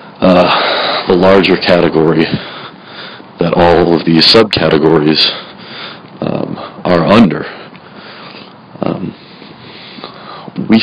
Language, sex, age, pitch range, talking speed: English, male, 40-59, 85-105 Hz, 70 wpm